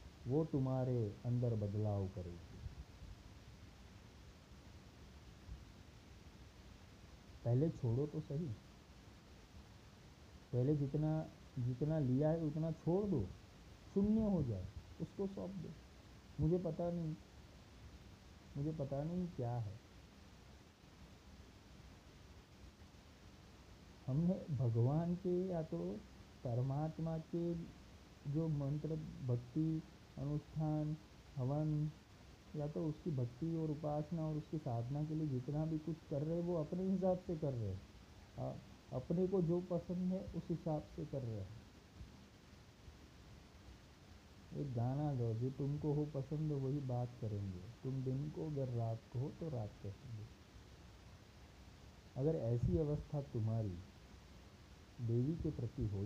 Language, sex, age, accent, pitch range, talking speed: Hindi, male, 50-69, native, 100-155 Hz, 115 wpm